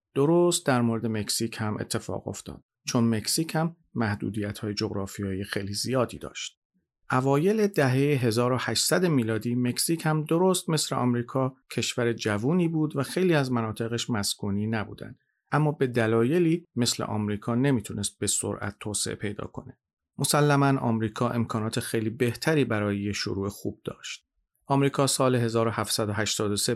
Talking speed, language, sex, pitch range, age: 130 wpm, Persian, male, 110-135 Hz, 40-59